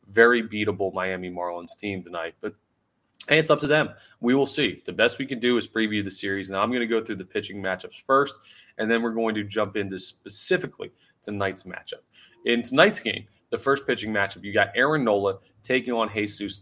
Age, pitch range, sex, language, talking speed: 20-39, 95-125 Hz, male, English, 210 wpm